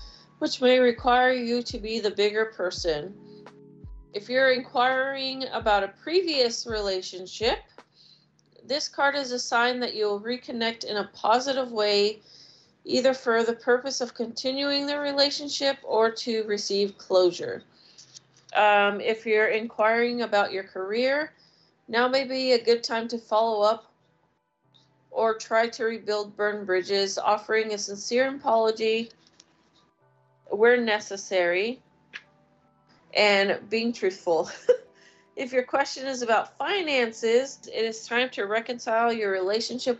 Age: 30-49